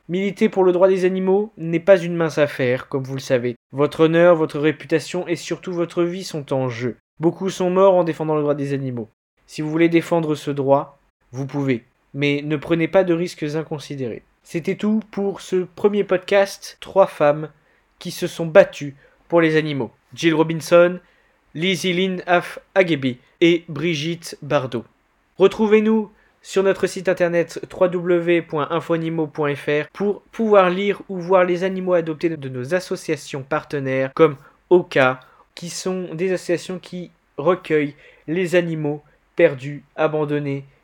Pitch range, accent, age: 150-180 Hz, French, 20-39